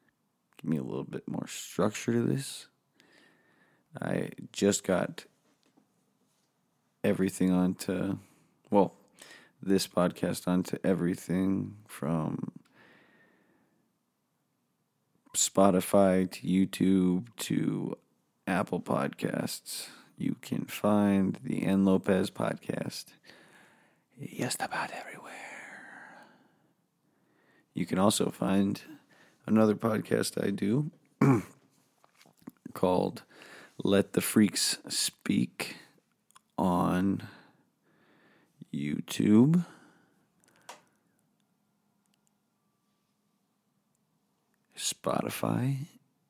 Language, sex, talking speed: English, male, 65 wpm